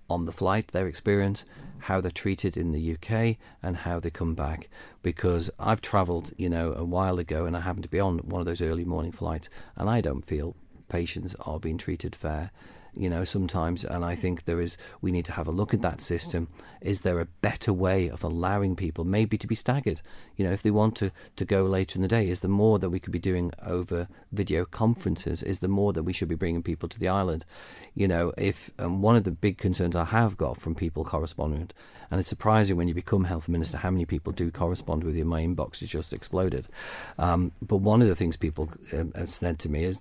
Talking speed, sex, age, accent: 235 wpm, male, 40-59, British